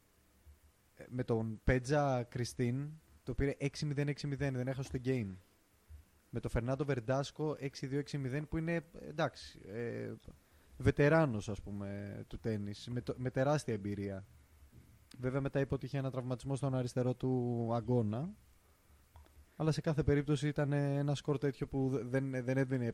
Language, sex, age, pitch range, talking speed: Greek, male, 20-39, 110-140 Hz, 130 wpm